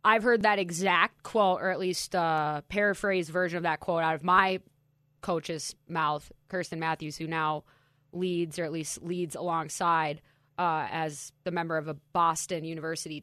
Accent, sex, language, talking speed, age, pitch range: American, female, English, 170 wpm, 20-39, 165-240 Hz